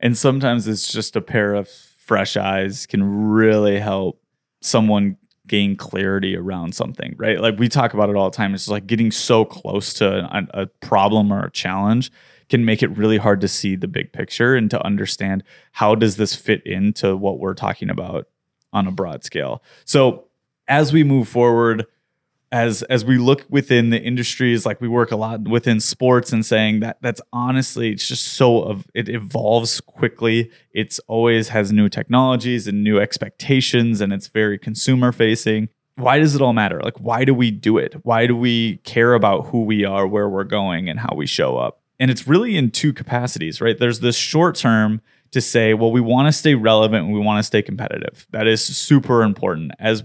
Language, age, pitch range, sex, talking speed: English, 20-39, 105-125 Hz, male, 200 wpm